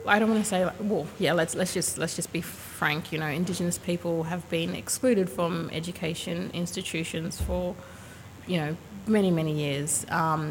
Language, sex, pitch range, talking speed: English, female, 155-175 Hz, 175 wpm